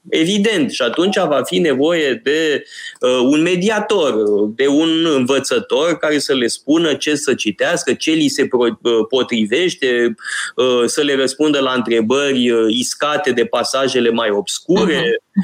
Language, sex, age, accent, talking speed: Romanian, male, 20-39, native, 130 wpm